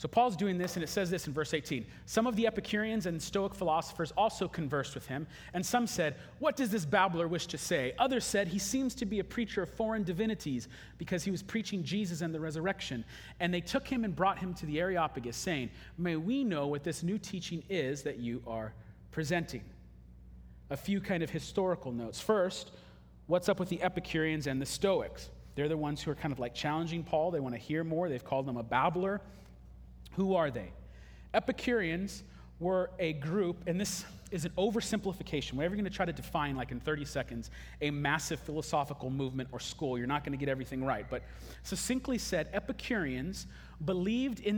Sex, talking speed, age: male, 200 wpm, 30-49